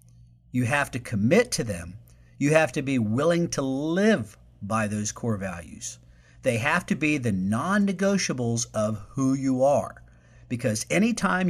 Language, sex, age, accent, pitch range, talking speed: English, male, 50-69, American, 105-160 Hz, 150 wpm